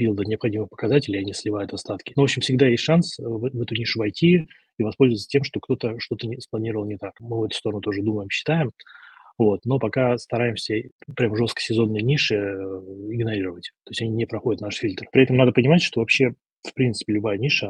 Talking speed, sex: 205 wpm, male